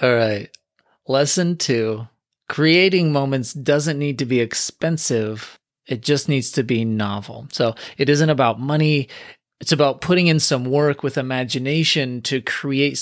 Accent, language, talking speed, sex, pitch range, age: American, English, 145 wpm, male, 120-150 Hz, 30-49